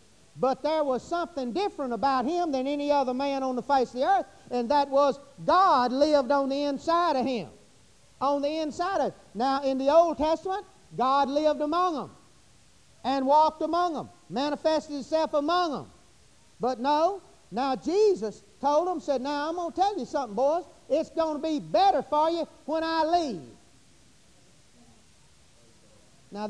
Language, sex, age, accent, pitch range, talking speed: English, male, 50-69, American, 250-315 Hz, 170 wpm